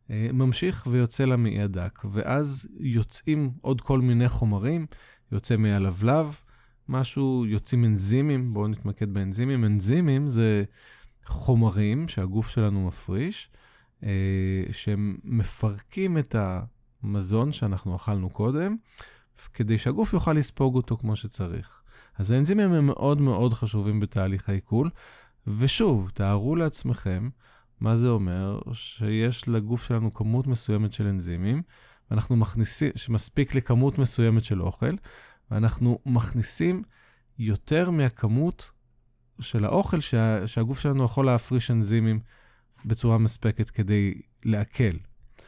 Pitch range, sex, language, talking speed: 105-130 Hz, male, Hebrew, 110 wpm